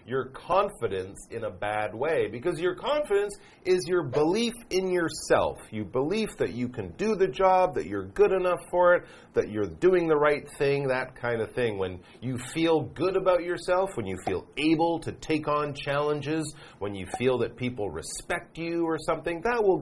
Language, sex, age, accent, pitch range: Chinese, male, 40-59, American, 120-190 Hz